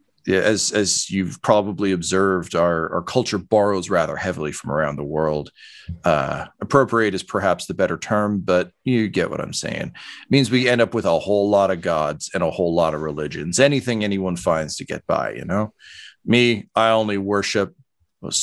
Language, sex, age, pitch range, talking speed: English, male, 40-59, 85-110 Hz, 190 wpm